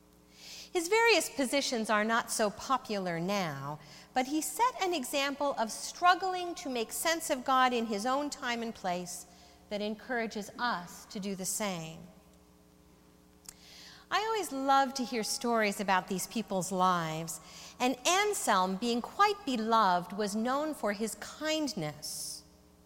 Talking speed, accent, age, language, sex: 140 wpm, American, 50-69, English, female